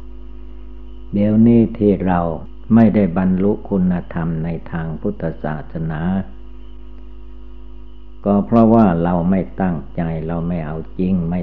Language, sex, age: Thai, male, 60-79